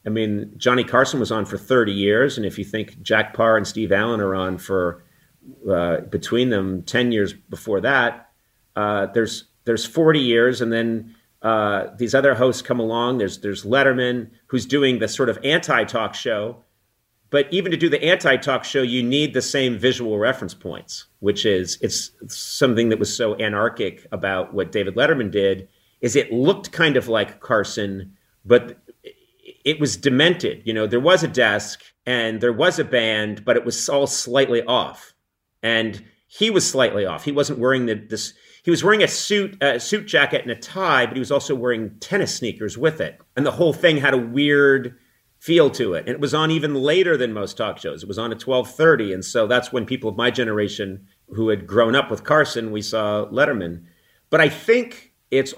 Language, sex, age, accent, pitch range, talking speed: English, male, 40-59, American, 110-135 Hz, 200 wpm